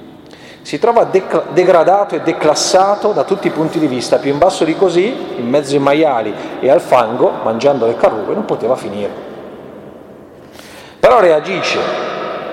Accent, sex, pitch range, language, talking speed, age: native, male, 145-180 Hz, Italian, 155 wpm, 40-59